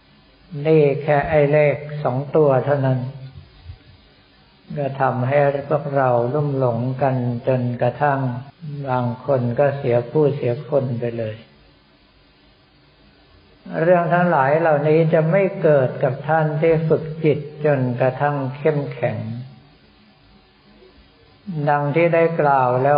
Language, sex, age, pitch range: Thai, male, 60-79, 125-145 Hz